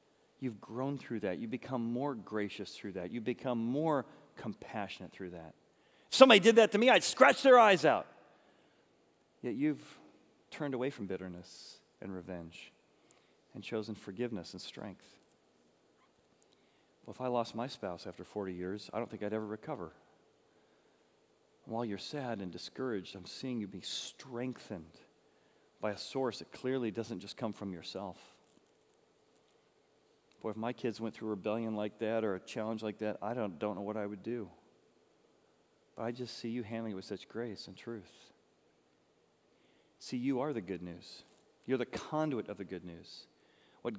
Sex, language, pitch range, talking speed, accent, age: male, English, 100-130 Hz, 170 wpm, American, 40-59